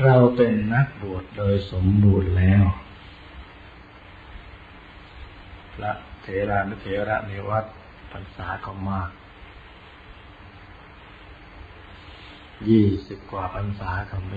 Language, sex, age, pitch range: Thai, male, 50-69, 95-105 Hz